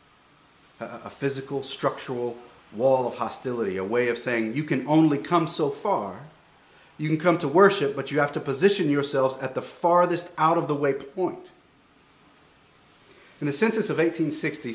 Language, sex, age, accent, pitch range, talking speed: English, male, 40-59, American, 115-140 Hz, 150 wpm